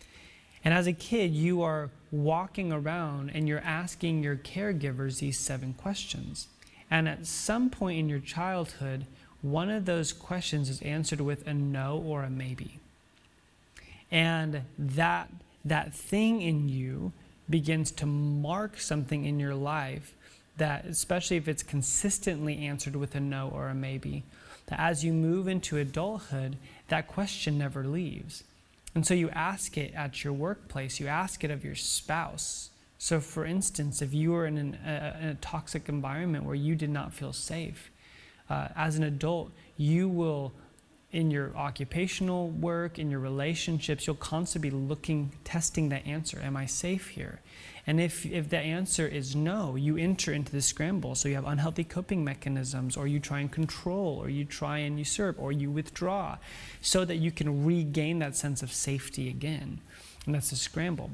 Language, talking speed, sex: English, 165 wpm, male